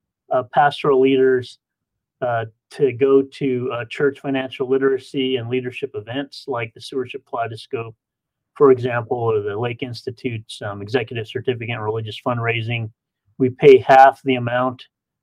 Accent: American